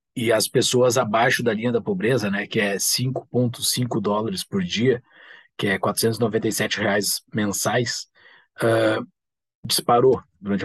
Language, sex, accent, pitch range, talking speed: Portuguese, male, Brazilian, 100-125 Hz, 130 wpm